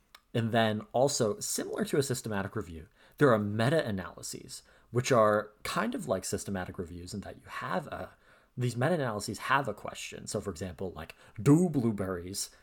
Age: 30-49